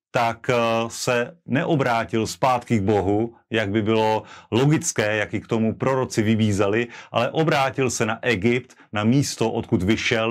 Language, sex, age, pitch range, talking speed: Slovak, male, 30-49, 110-125 Hz, 145 wpm